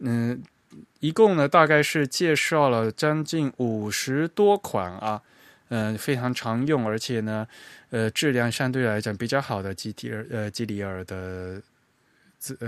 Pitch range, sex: 110-145 Hz, male